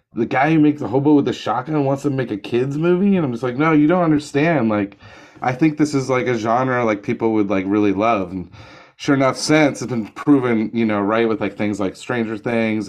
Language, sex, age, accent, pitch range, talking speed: English, male, 30-49, American, 100-115 Hz, 245 wpm